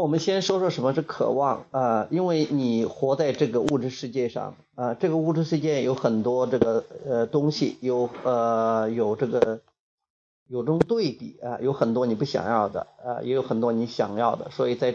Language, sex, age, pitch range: Chinese, male, 30-49, 120-155 Hz